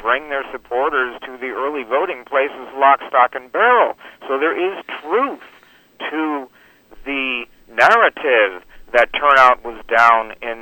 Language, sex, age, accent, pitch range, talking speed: English, male, 50-69, American, 110-135 Hz, 135 wpm